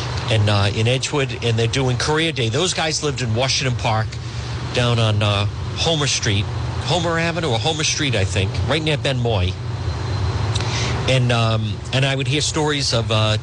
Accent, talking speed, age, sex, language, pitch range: American, 175 wpm, 50-69, male, English, 110-130 Hz